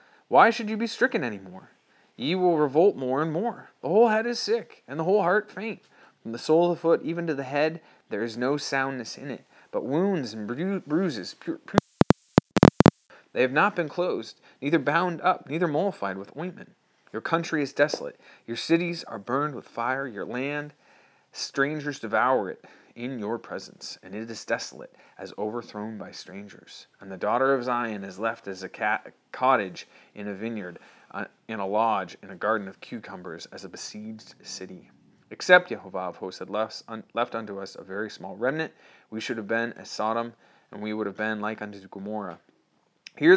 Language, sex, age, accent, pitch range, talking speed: English, male, 30-49, American, 110-170 Hz, 195 wpm